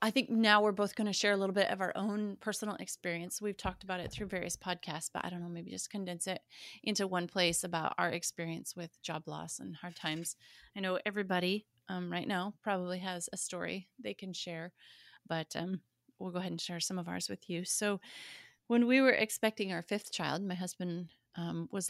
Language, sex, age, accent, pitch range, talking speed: English, female, 30-49, American, 170-205 Hz, 220 wpm